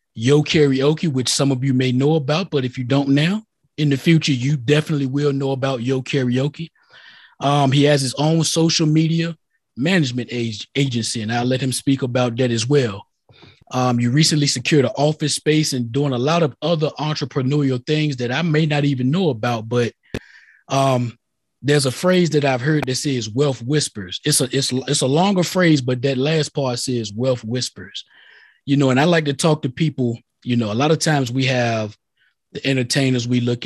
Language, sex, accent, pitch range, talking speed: English, male, American, 125-150 Hz, 195 wpm